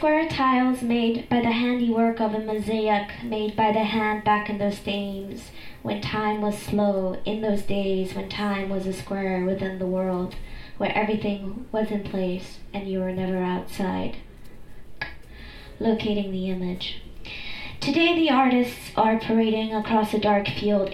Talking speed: 155 wpm